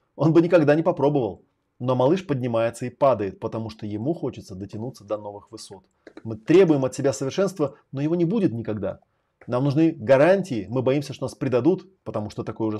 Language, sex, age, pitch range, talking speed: Russian, male, 30-49, 110-145 Hz, 190 wpm